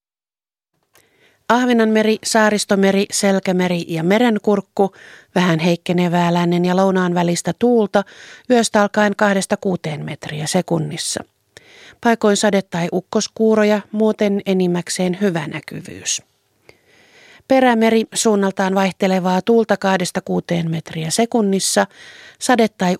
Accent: native